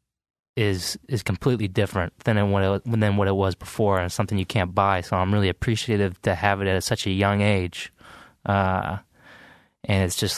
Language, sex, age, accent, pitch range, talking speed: English, male, 20-39, American, 95-110 Hz, 190 wpm